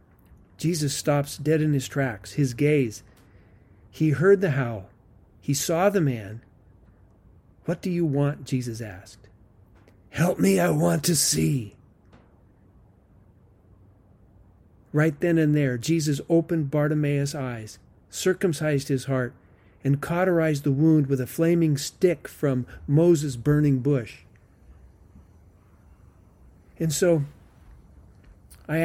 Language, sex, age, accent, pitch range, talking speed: English, male, 50-69, American, 90-150 Hz, 110 wpm